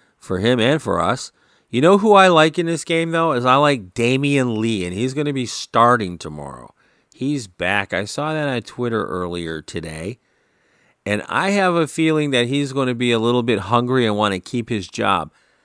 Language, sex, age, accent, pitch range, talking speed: English, male, 40-59, American, 95-140 Hz, 205 wpm